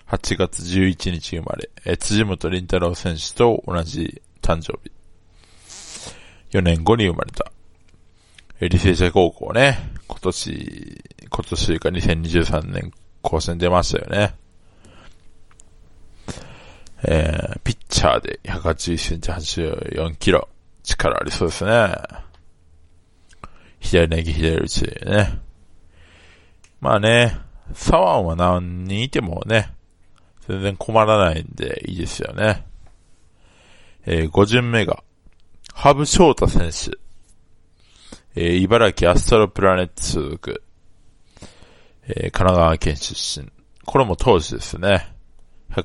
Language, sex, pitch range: Japanese, male, 85-100 Hz